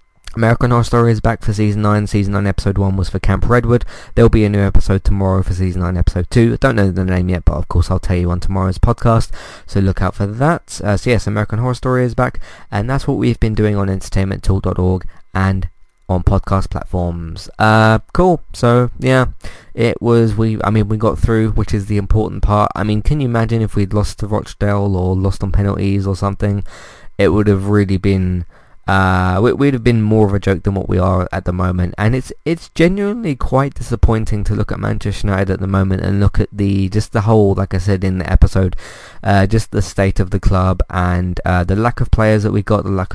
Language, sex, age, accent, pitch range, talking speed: English, male, 20-39, British, 95-110 Hz, 230 wpm